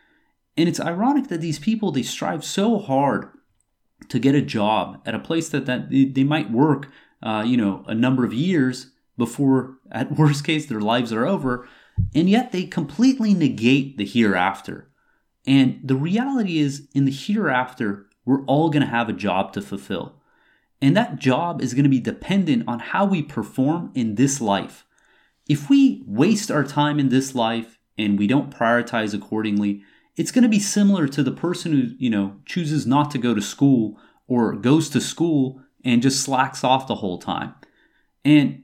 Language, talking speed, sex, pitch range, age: English, 180 wpm, male, 120-160 Hz, 30-49